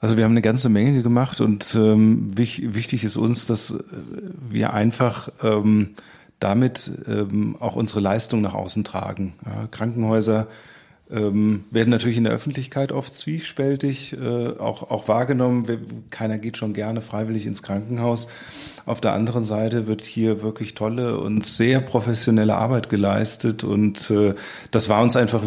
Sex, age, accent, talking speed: male, 40-59, German, 150 wpm